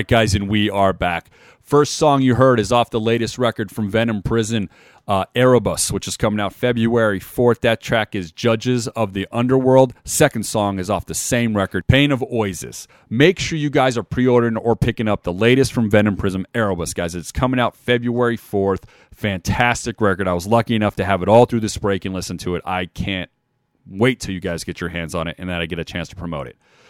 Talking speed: 230 wpm